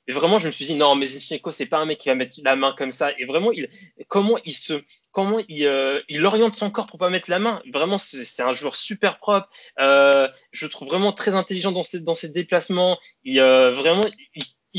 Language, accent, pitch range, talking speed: French, French, 140-180 Hz, 255 wpm